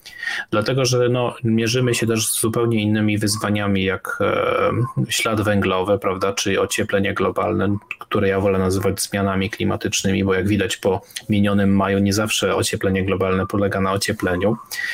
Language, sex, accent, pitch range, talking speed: Polish, male, native, 100-120 Hz, 140 wpm